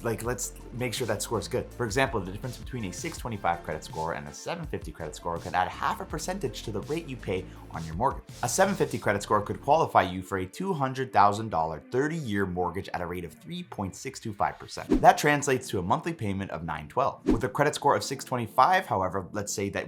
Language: English